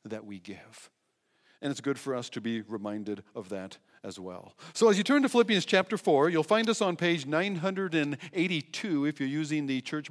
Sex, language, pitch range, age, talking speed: male, English, 125-200 Hz, 50-69, 200 wpm